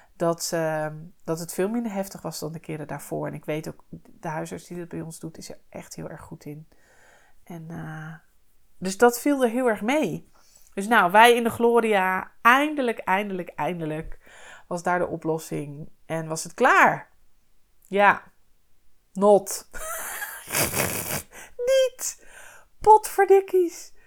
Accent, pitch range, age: Dutch, 165-230 Hz, 20-39